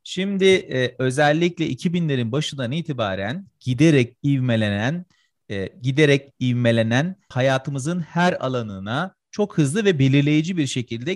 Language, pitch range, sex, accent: Turkish, 125-180 Hz, male, native